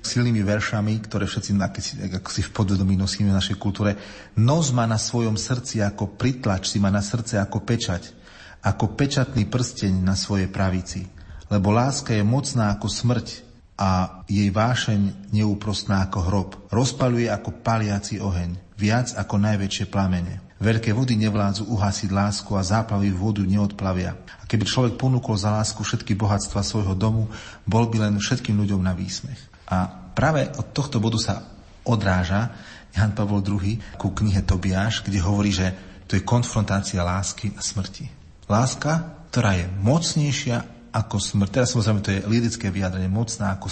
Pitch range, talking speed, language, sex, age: 100-115 Hz, 155 wpm, Slovak, male, 40-59